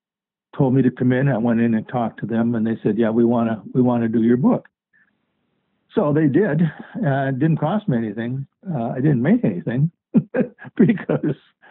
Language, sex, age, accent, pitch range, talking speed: English, male, 60-79, American, 120-150 Hz, 195 wpm